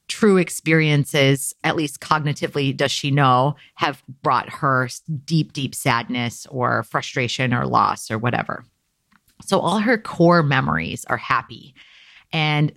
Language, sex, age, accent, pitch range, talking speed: English, female, 30-49, American, 140-180 Hz, 130 wpm